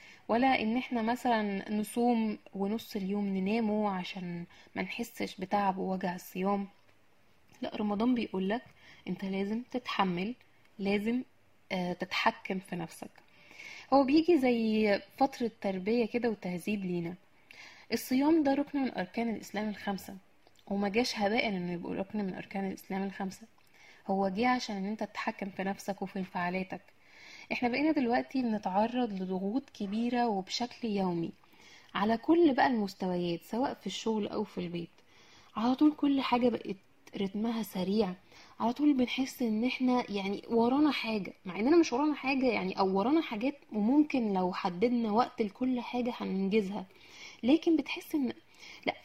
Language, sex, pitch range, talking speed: Arabic, female, 195-250 Hz, 140 wpm